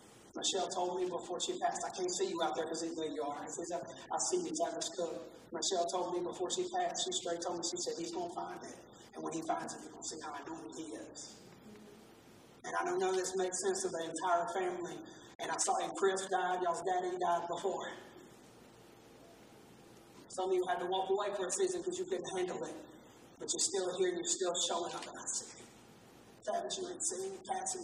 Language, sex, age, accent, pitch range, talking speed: English, male, 40-59, American, 200-315 Hz, 230 wpm